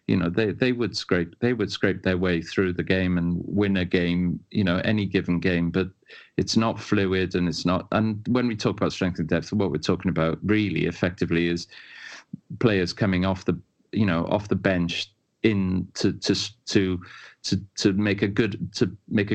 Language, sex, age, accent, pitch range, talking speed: English, male, 30-49, British, 85-100 Hz, 200 wpm